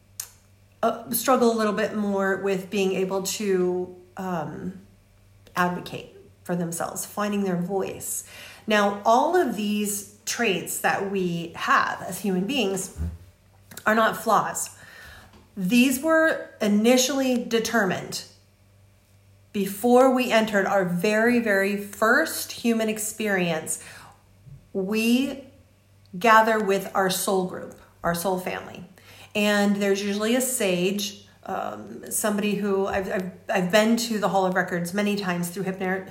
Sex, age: female, 40-59